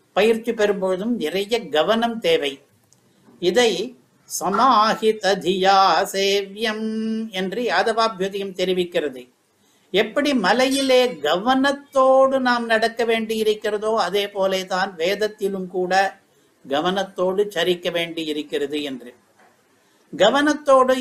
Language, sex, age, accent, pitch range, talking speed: Tamil, male, 60-79, native, 190-230 Hz, 55 wpm